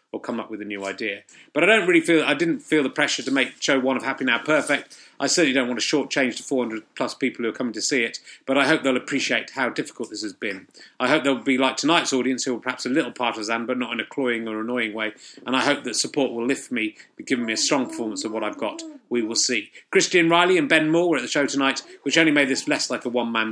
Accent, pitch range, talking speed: British, 125-160 Hz, 290 wpm